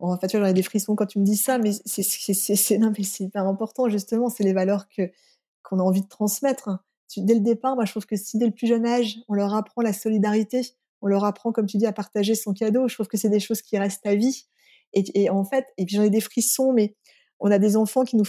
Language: French